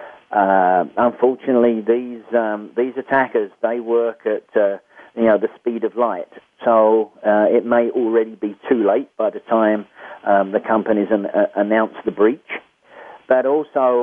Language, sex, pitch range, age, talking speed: English, male, 105-125 Hz, 40-59, 160 wpm